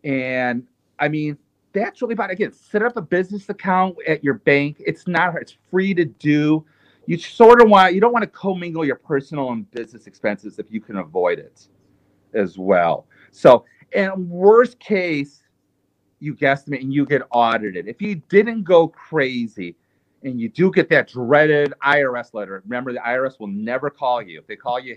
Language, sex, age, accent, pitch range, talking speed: English, male, 40-59, American, 120-165 Hz, 185 wpm